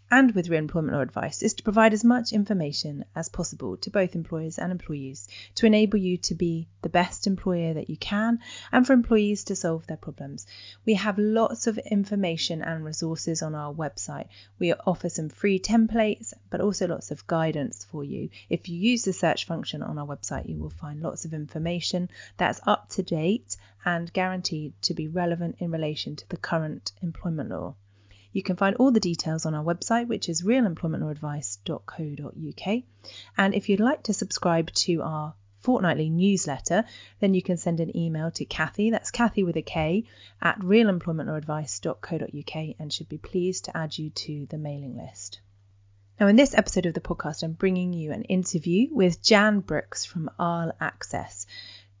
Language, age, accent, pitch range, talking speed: English, 30-49, British, 155-200 Hz, 180 wpm